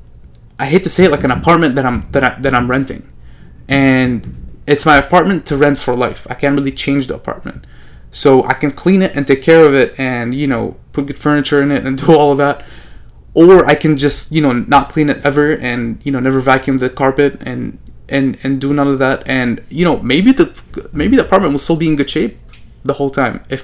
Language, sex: English, male